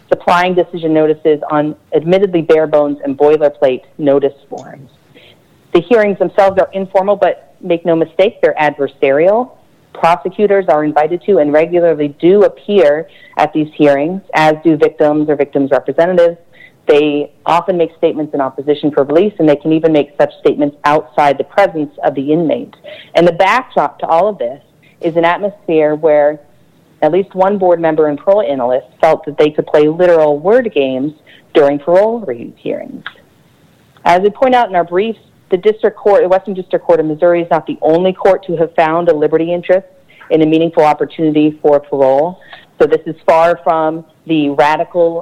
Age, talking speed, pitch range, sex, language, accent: 40-59, 175 wpm, 150-185 Hz, female, English, American